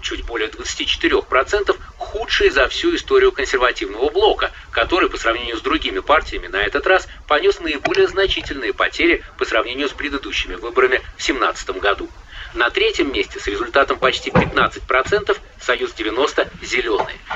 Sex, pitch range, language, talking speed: male, 375-405 Hz, Russian, 135 wpm